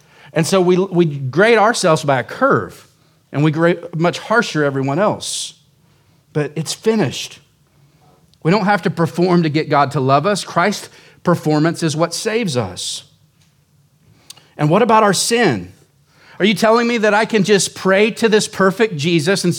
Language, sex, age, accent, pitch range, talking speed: English, male, 40-59, American, 135-170 Hz, 170 wpm